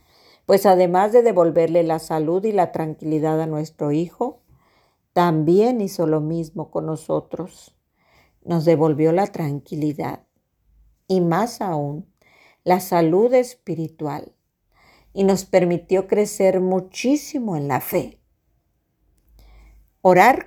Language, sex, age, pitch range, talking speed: Spanish, female, 50-69, 155-200 Hz, 110 wpm